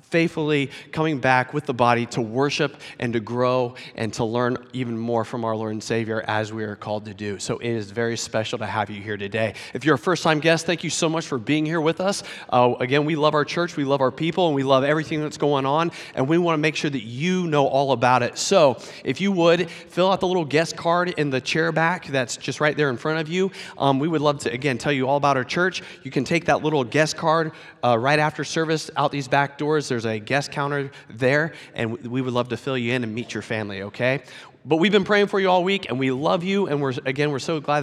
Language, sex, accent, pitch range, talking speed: English, male, American, 120-155 Hz, 265 wpm